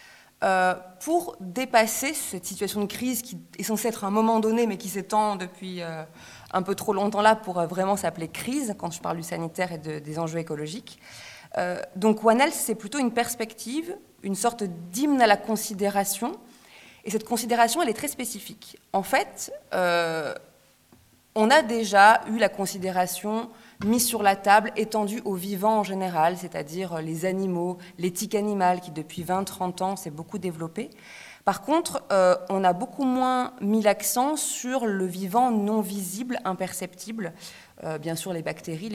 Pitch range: 180-225 Hz